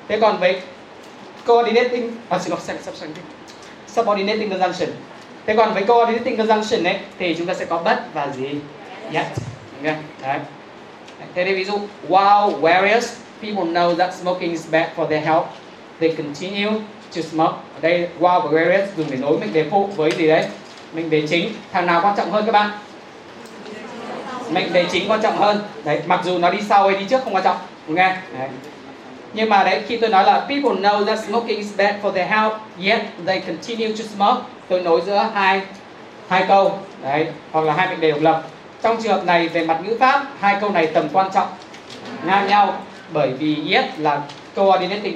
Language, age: Vietnamese, 20-39